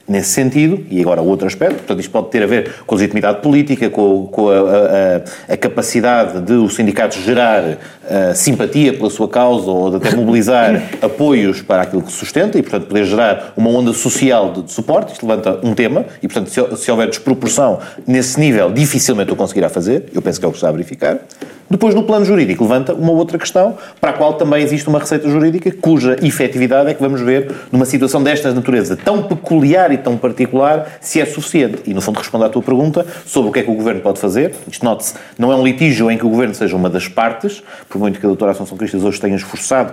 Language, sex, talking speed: Portuguese, male, 225 wpm